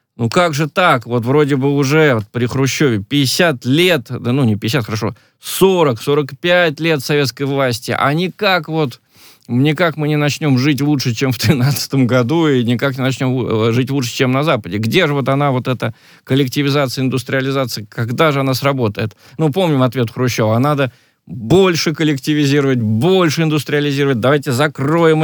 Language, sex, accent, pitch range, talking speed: Russian, male, native, 120-155 Hz, 160 wpm